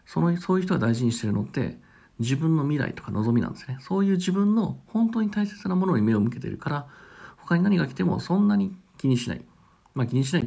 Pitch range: 115-180 Hz